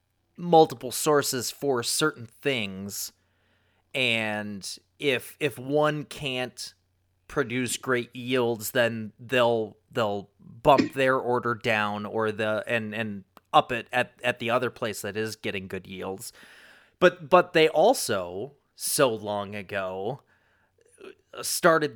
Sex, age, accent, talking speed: male, 30-49, American, 120 wpm